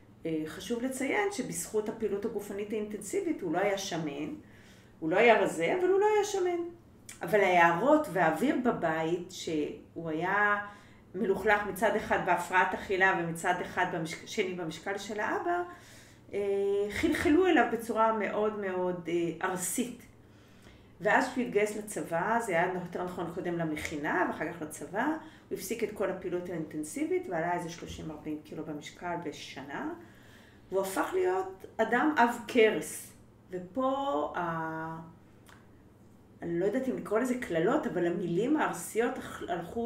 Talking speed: 130 wpm